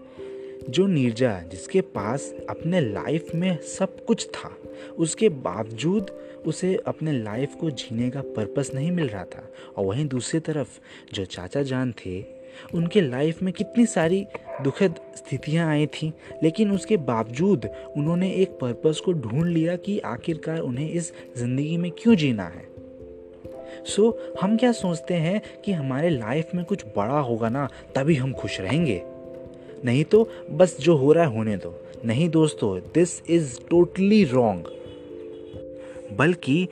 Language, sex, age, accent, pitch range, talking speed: Hindi, male, 20-39, native, 110-170 Hz, 150 wpm